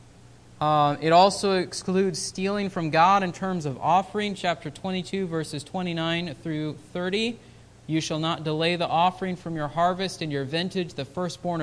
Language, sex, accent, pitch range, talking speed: English, male, American, 165-205 Hz, 160 wpm